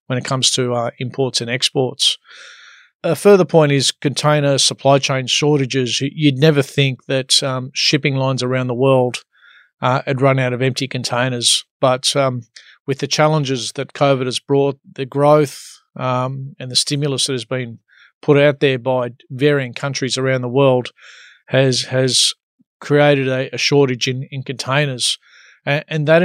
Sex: male